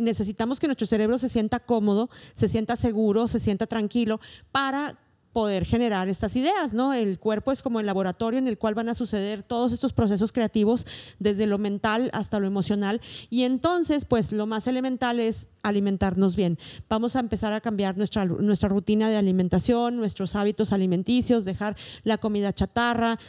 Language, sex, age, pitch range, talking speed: Spanish, female, 40-59, 205-245 Hz, 175 wpm